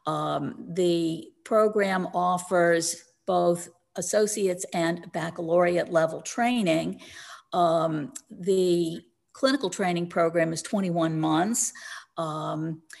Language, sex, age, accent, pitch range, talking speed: English, female, 50-69, American, 170-200 Hz, 90 wpm